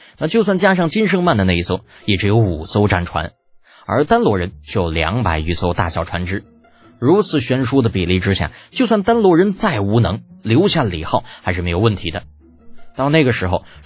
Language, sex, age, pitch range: Chinese, male, 20-39, 90-155 Hz